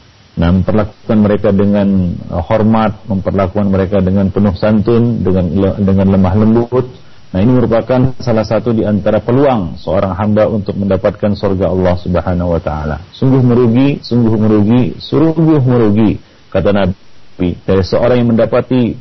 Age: 40-59